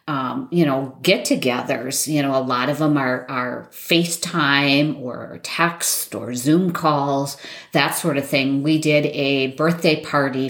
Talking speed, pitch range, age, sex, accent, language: 160 wpm, 135-165 Hz, 40-59, female, American, English